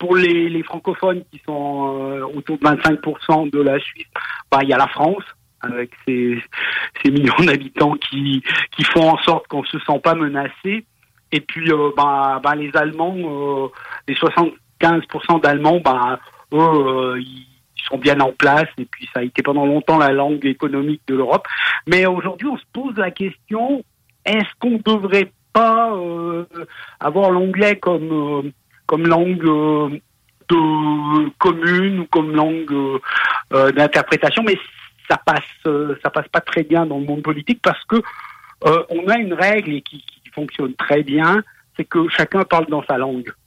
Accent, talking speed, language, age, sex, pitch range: French, 165 wpm, French, 50-69, male, 140-165 Hz